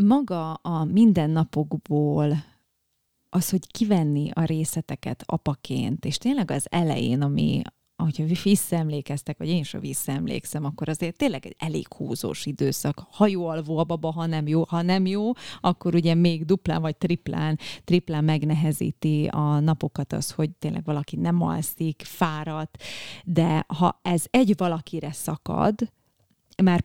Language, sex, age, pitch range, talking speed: Hungarian, female, 30-49, 155-175 Hz, 135 wpm